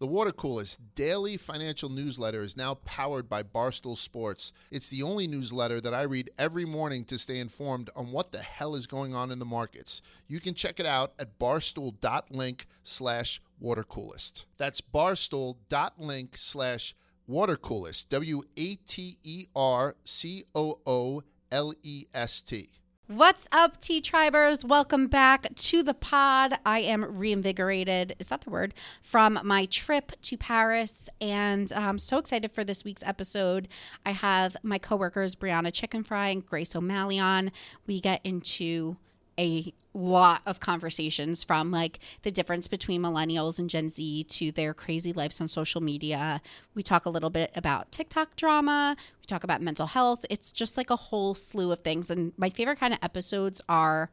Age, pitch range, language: 40-59, 140-205 Hz, English